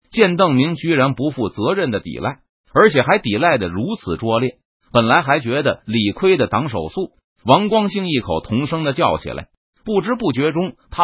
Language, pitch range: Chinese, 110-175 Hz